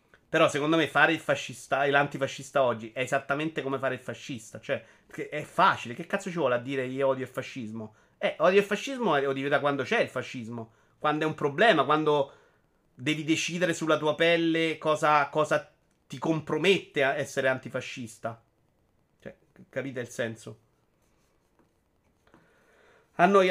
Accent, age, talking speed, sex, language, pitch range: native, 30-49, 160 wpm, male, Italian, 125-165 Hz